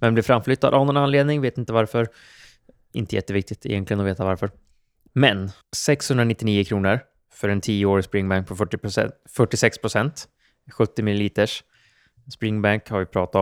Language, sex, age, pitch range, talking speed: Swedish, male, 20-39, 95-115 Hz, 145 wpm